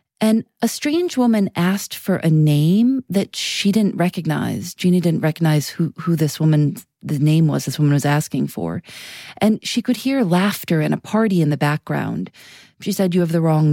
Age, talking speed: 40-59, 190 wpm